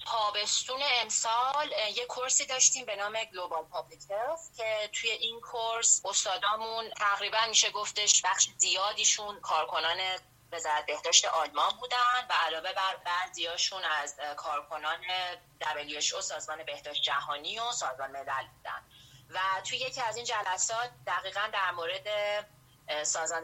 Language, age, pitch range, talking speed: Persian, 30-49, 160-215 Hz, 125 wpm